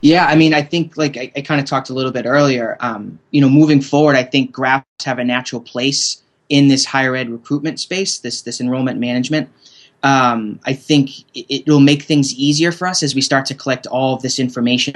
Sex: male